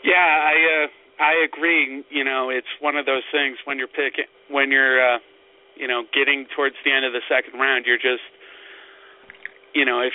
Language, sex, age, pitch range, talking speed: English, male, 30-49, 130-155 Hz, 195 wpm